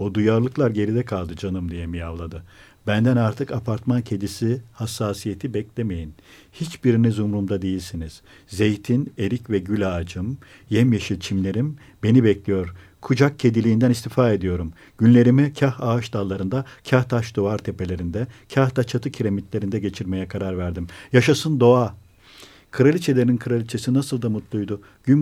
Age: 50-69